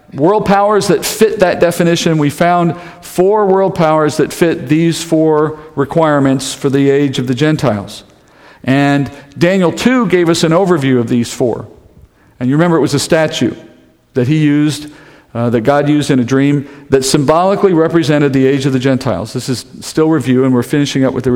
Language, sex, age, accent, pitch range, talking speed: English, male, 50-69, American, 130-165 Hz, 190 wpm